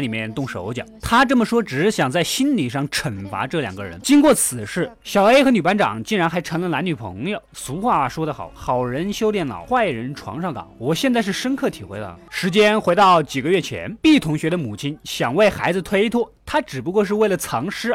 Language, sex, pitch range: Chinese, male, 150-230 Hz